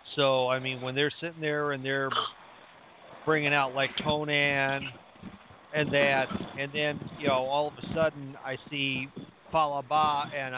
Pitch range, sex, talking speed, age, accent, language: 130-160 Hz, male, 155 wpm, 50-69, American, English